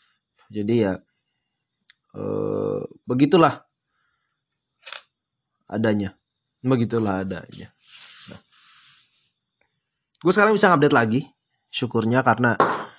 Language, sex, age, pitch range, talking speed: Indonesian, male, 20-39, 110-145 Hz, 70 wpm